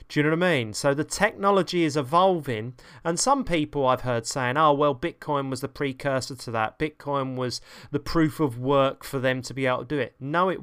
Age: 30-49